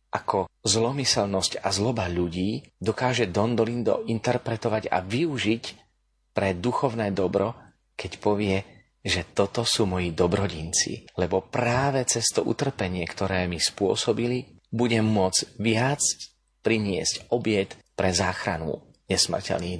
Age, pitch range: 30-49, 90-115 Hz